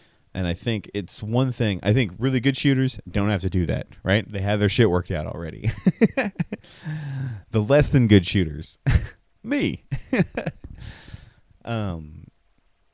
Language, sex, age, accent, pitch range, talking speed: English, male, 30-49, American, 90-120 Hz, 145 wpm